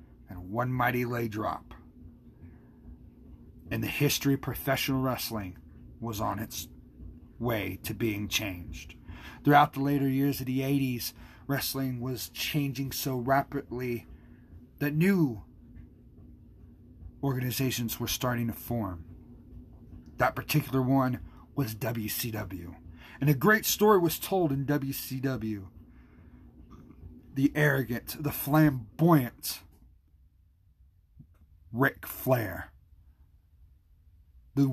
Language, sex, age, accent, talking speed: English, male, 40-59, American, 100 wpm